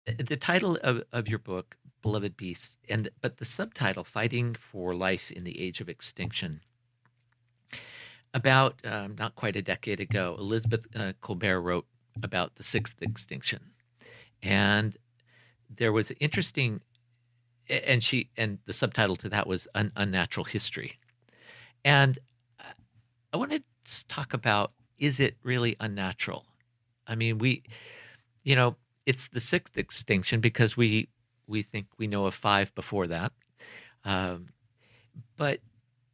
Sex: male